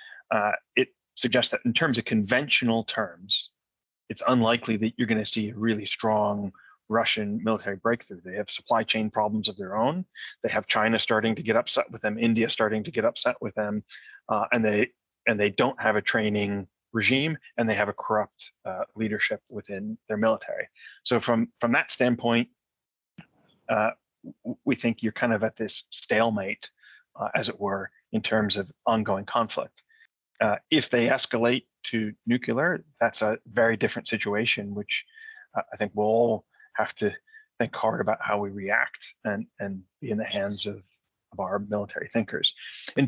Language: English